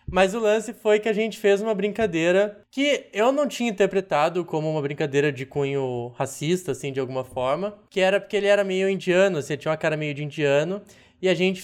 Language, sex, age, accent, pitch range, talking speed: Portuguese, male, 20-39, Brazilian, 150-205 Hz, 220 wpm